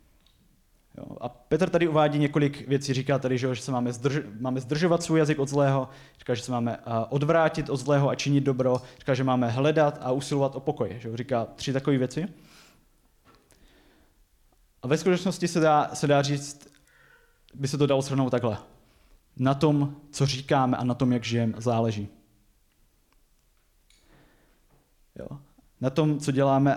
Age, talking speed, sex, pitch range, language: 20-39, 155 wpm, male, 125-150 Hz, Czech